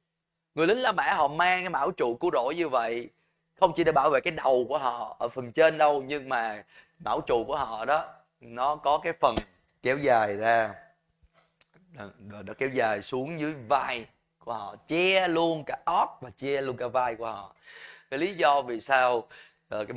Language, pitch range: Vietnamese, 115-165 Hz